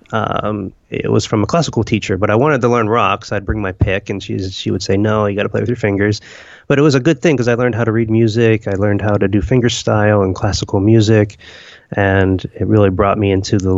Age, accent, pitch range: 30-49, American, 95-110 Hz